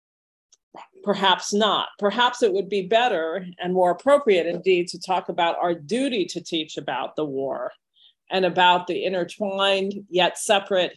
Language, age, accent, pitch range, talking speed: English, 40-59, American, 170-205 Hz, 150 wpm